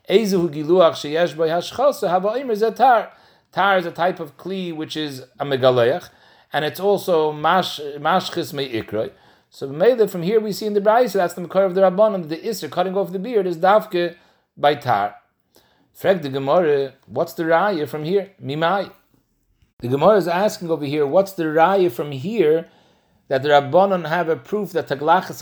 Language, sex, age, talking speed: English, male, 60-79, 165 wpm